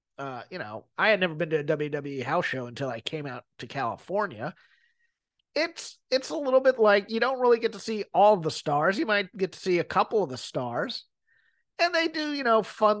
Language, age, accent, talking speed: English, 30-49, American, 225 wpm